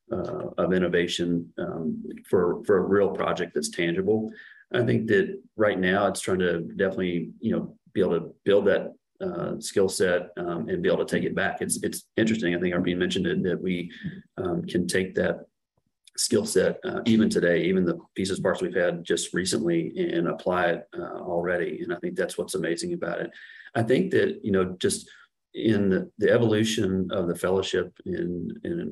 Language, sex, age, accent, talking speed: English, male, 40-59, American, 195 wpm